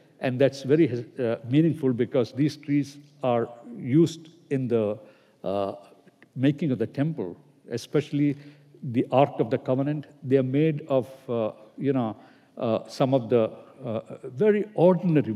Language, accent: English, Indian